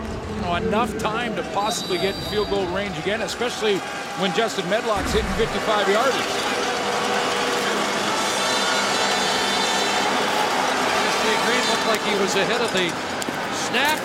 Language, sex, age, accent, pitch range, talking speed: English, male, 50-69, American, 200-235 Hz, 110 wpm